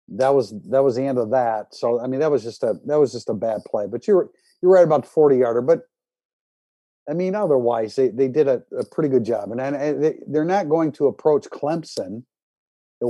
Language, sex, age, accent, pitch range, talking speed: English, male, 50-69, American, 115-145 Hz, 235 wpm